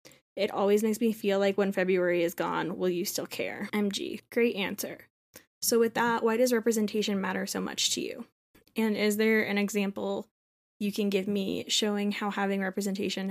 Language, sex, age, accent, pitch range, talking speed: English, female, 10-29, American, 195-215 Hz, 185 wpm